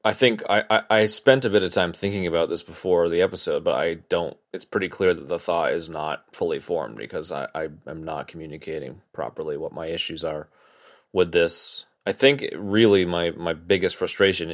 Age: 30-49